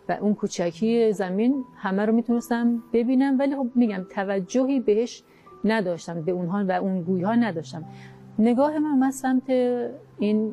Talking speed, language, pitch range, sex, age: 135 wpm, Persian, 185-235 Hz, female, 40-59